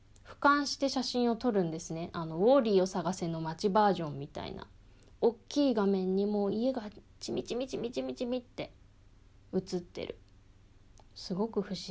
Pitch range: 160-225 Hz